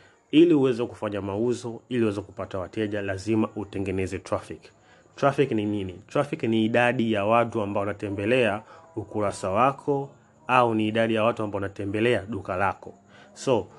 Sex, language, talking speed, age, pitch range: male, Swahili, 145 wpm, 30-49, 105-120 Hz